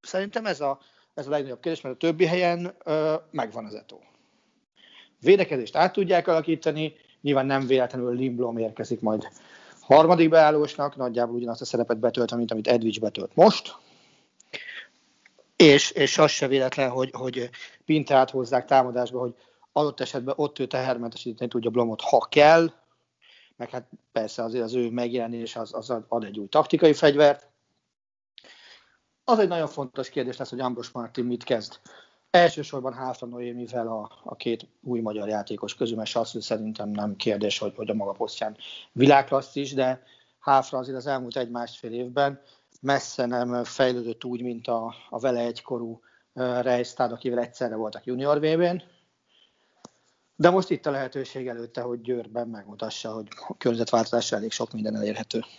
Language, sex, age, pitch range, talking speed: Hungarian, male, 40-59, 120-145 Hz, 150 wpm